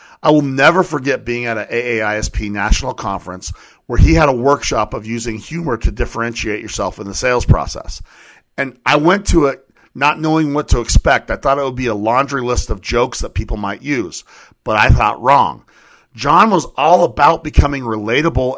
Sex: male